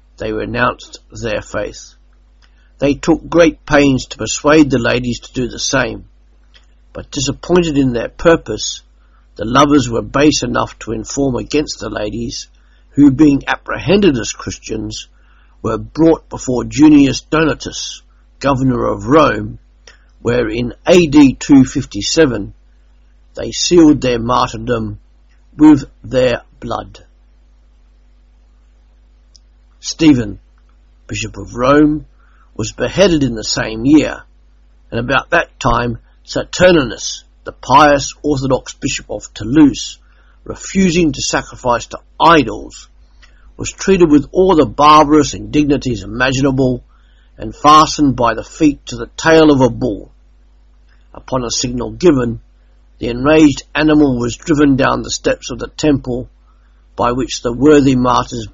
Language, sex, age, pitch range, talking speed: English, male, 60-79, 90-145 Hz, 125 wpm